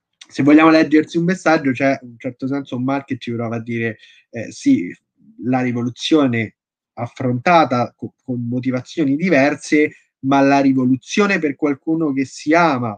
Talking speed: 160 wpm